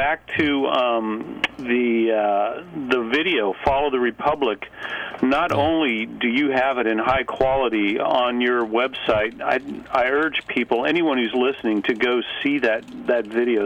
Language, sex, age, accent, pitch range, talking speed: English, male, 40-59, American, 110-130 Hz, 155 wpm